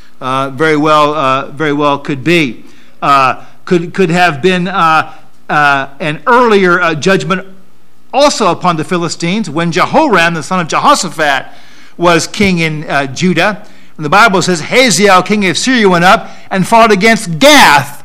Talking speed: 160 wpm